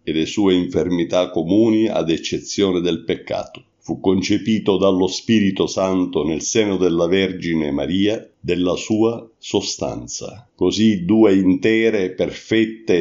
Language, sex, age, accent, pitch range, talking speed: Italian, male, 50-69, native, 90-110 Hz, 120 wpm